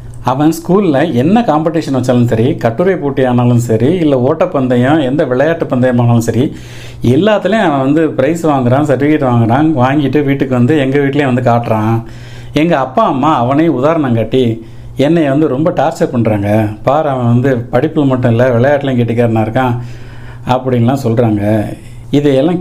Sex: male